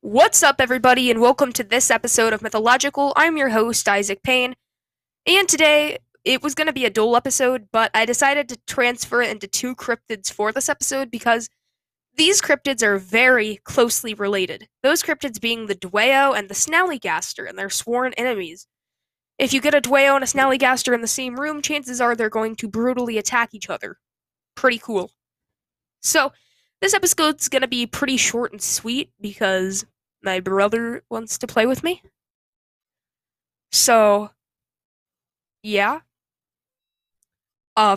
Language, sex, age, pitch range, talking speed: English, female, 10-29, 220-280 Hz, 155 wpm